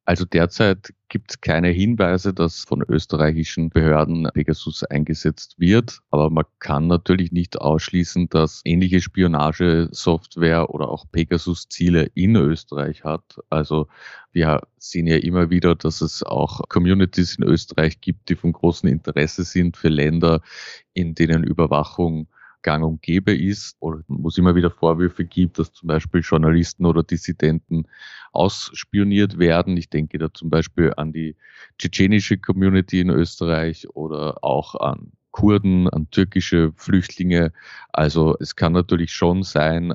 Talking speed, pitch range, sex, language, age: 140 wpm, 80-90 Hz, male, German, 30-49